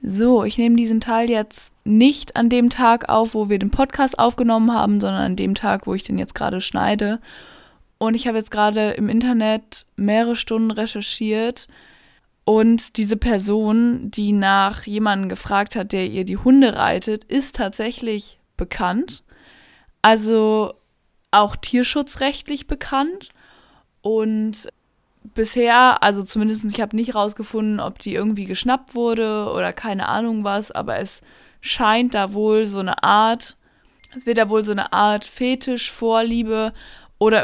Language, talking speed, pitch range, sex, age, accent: German, 145 wpm, 210-235 Hz, female, 20-39, German